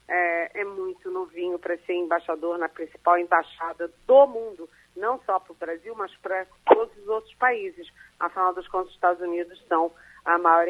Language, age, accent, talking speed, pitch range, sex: Portuguese, 40-59, Brazilian, 180 wpm, 175-240 Hz, female